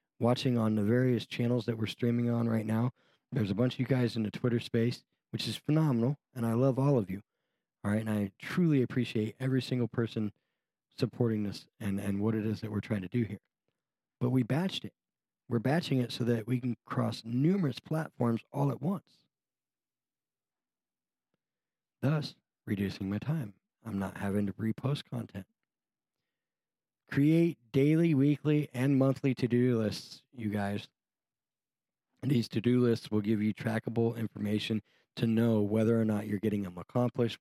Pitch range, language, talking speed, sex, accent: 105-135 Hz, English, 170 wpm, male, American